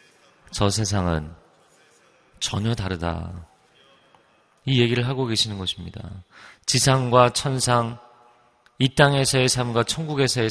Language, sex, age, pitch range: Korean, male, 30-49, 100-140 Hz